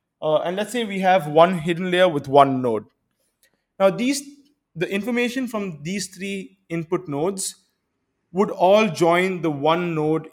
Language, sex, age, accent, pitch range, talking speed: English, male, 20-39, Indian, 160-205 Hz, 155 wpm